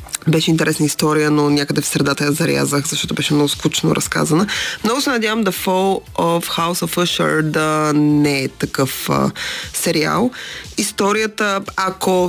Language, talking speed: Bulgarian, 150 wpm